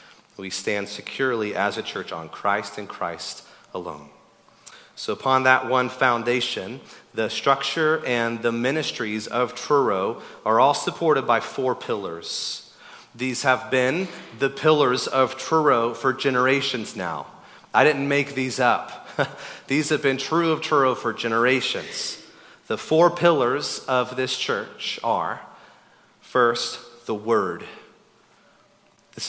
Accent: American